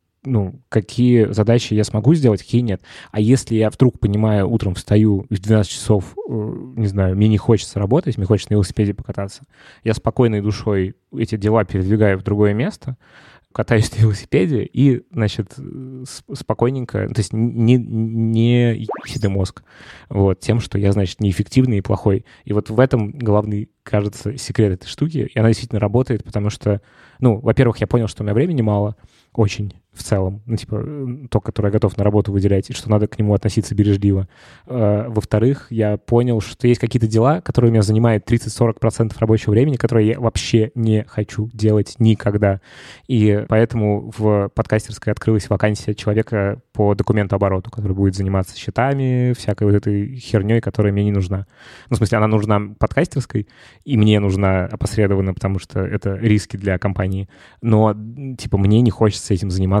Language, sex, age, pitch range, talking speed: Russian, male, 20-39, 105-115 Hz, 170 wpm